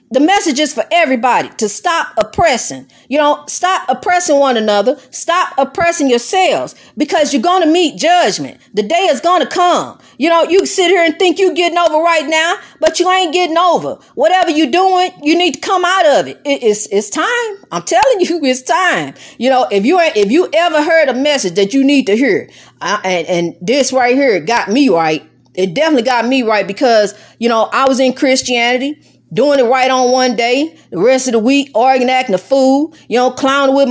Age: 40-59